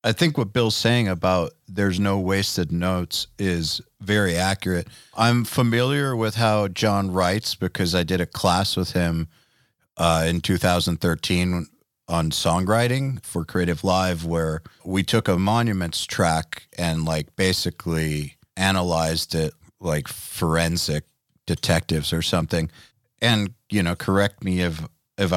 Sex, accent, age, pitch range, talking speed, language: male, American, 40-59, 85-105 Hz, 135 wpm, English